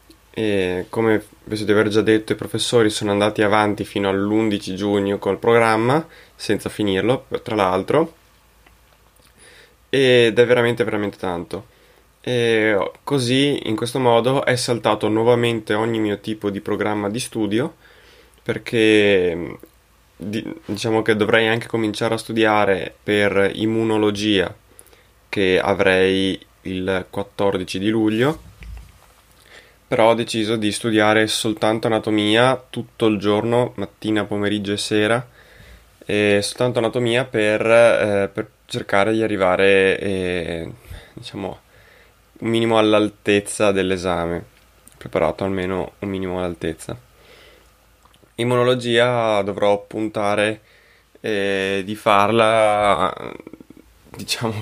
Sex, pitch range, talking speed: male, 100-115 Hz, 110 wpm